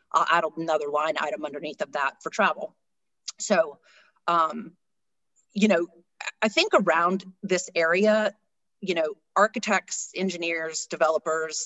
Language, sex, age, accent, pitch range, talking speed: English, female, 40-59, American, 155-205 Hz, 125 wpm